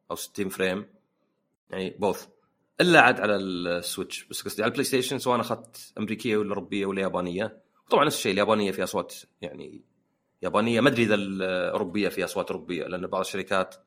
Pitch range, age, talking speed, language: 105-160 Hz, 30-49, 170 wpm, English